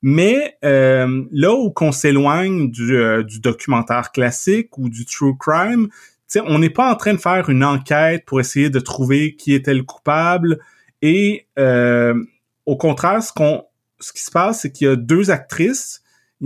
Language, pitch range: French, 130-170 Hz